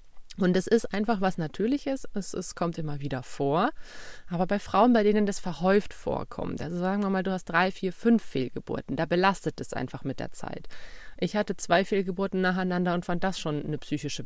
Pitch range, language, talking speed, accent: 165-210 Hz, German, 200 wpm, German